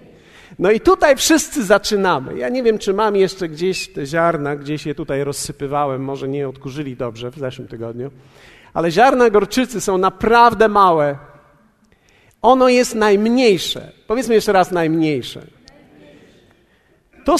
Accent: native